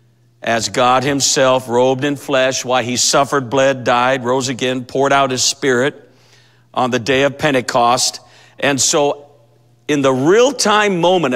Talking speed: 155 wpm